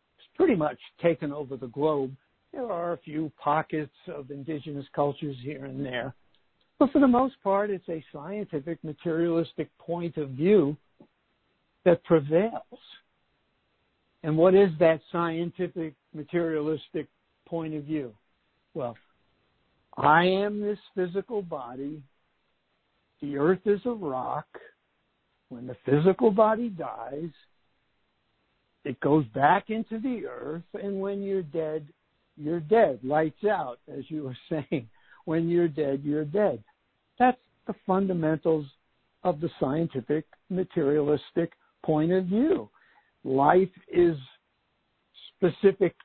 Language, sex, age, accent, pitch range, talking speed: English, male, 60-79, American, 145-185 Hz, 120 wpm